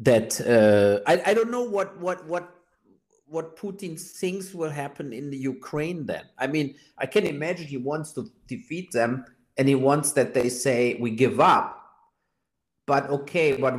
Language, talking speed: English, 175 wpm